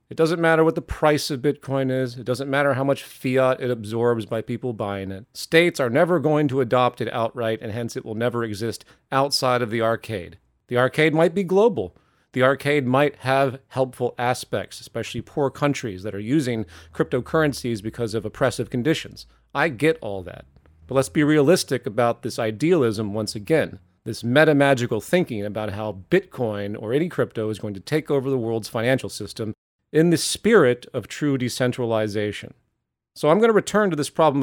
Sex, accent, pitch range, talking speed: male, American, 110-140 Hz, 185 wpm